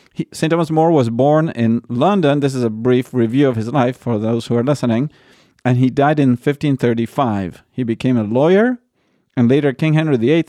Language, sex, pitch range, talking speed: English, male, 115-140 Hz, 200 wpm